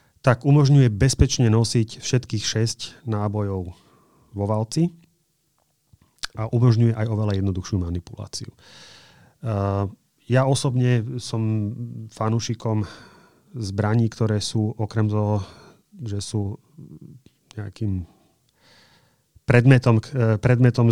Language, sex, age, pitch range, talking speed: Slovak, male, 30-49, 105-120 Hz, 85 wpm